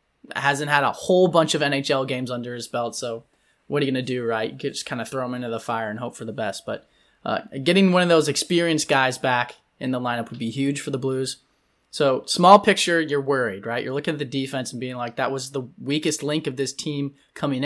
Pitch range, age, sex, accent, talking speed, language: 130-160 Hz, 20-39, male, American, 255 wpm, English